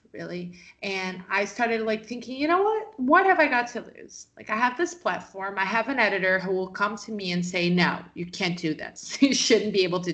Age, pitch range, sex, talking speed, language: 30-49, 180-250 Hz, female, 245 wpm, English